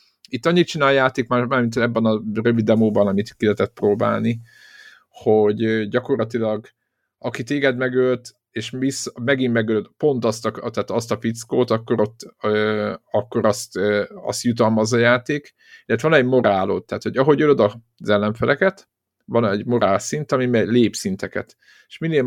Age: 50-69